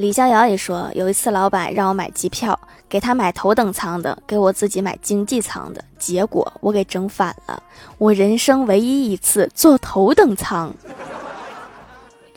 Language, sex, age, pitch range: Chinese, female, 20-39, 185-230 Hz